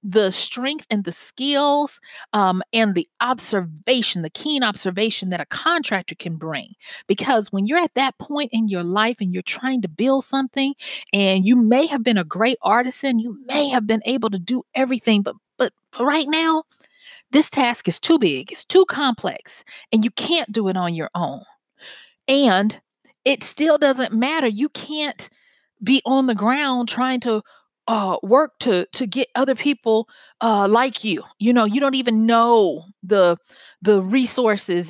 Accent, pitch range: American, 200-270 Hz